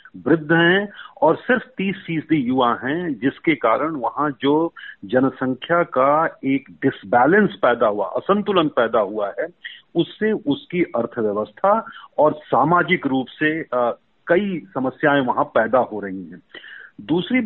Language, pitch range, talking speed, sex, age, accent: Hindi, 130-190 Hz, 130 wpm, male, 40-59, native